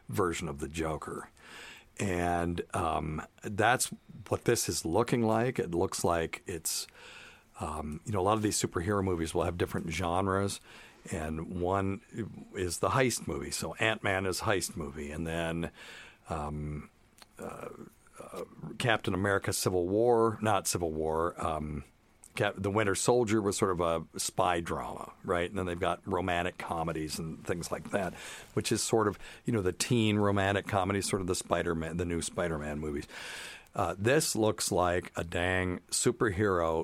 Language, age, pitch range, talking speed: English, 50-69, 80-100 Hz, 160 wpm